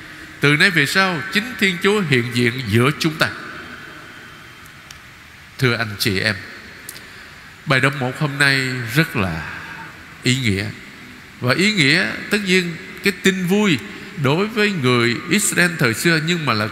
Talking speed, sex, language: 150 wpm, male, Vietnamese